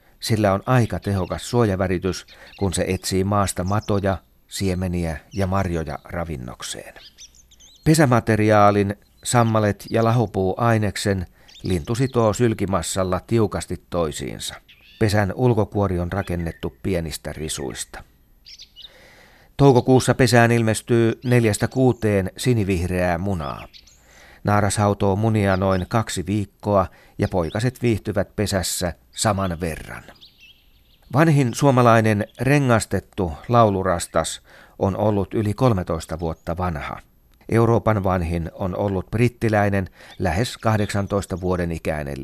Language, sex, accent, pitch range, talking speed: Finnish, male, native, 90-110 Hz, 95 wpm